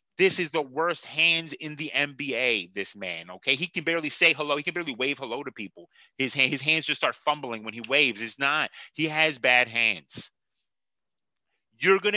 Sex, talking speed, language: male, 195 wpm, English